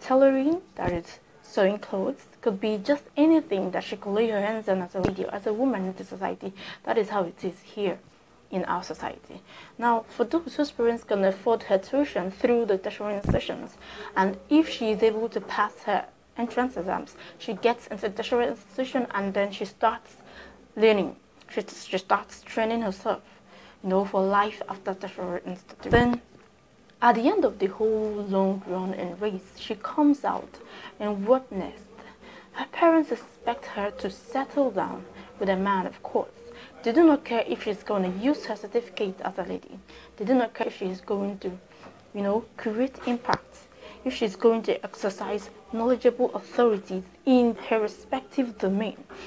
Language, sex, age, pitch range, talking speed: English, female, 20-39, 195-245 Hz, 175 wpm